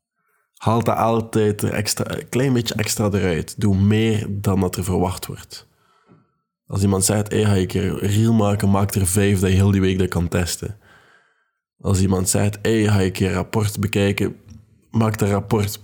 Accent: Dutch